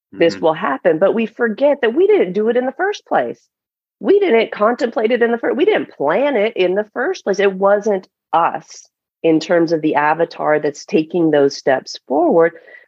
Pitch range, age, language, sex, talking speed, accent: 150-200 Hz, 30-49, English, female, 200 wpm, American